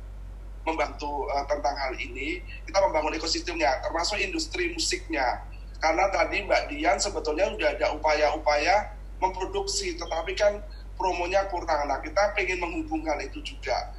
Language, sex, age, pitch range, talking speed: Indonesian, male, 30-49, 145-180 Hz, 130 wpm